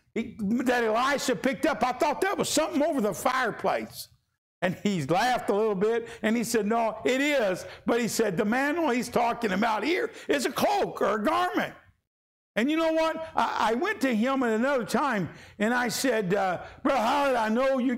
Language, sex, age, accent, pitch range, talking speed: English, male, 60-79, American, 165-240 Hz, 200 wpm